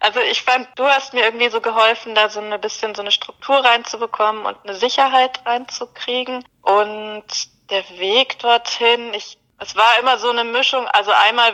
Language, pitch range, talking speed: German, 185-230 Hz, 175 wpm